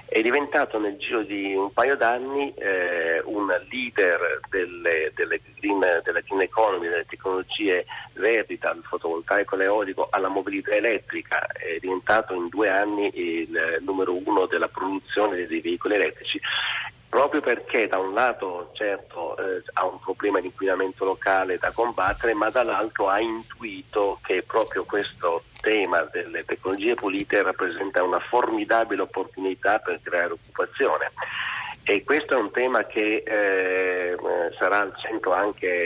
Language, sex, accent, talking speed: Italian, male, native, 140 wpm